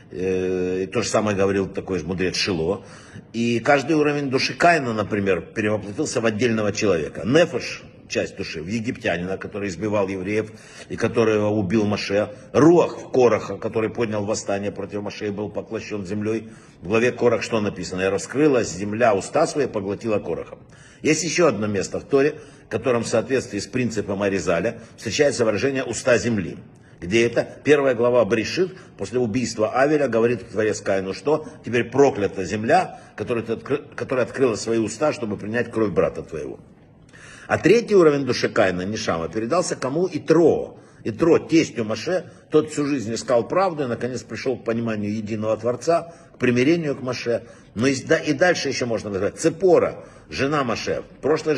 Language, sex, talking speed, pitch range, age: Russian, male, 155 wpm, 105-135 Hz, 60-79